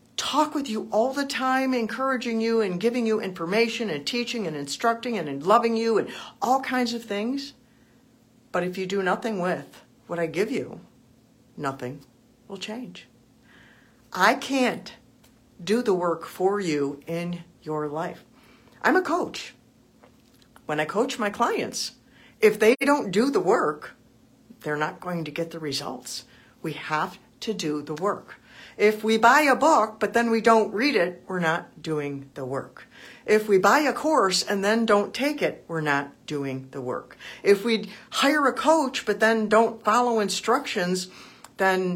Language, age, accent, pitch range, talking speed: English, 50-69, American, 160-230 Hz, 165 wpm